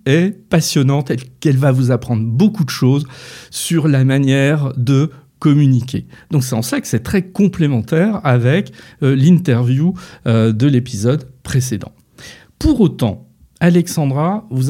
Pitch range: 120-160 Hz